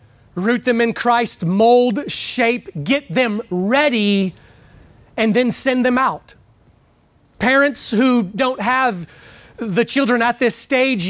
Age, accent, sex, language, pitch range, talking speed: 30-49, American, male, English, 210-285 Hz, 125 wpm